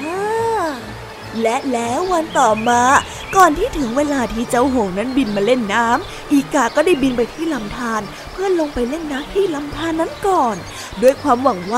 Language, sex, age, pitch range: Thai, female, 20-39, 245-325 Hz